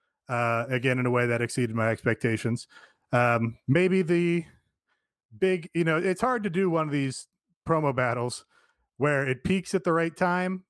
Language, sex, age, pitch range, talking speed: English, male, 30-49, 130-170 Hz, 175 wpm